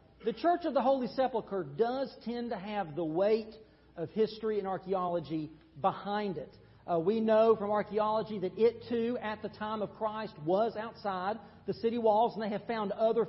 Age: 40-59